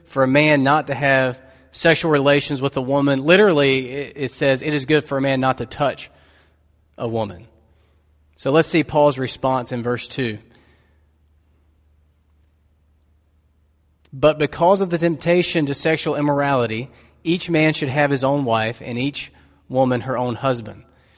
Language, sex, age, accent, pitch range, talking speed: English, male, 30-49, American, 105-155 Hz, 155 wpm